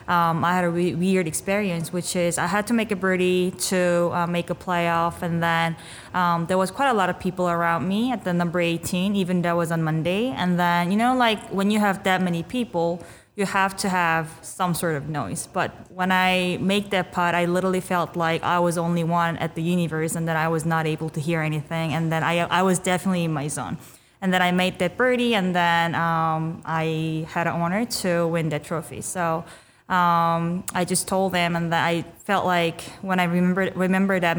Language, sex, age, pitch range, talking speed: English, female, 20-39, 165-185 Hz, 225 wpm